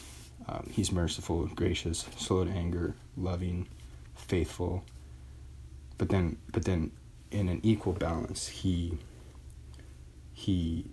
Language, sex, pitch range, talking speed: English, male, 65-95 Hz, 105 wpm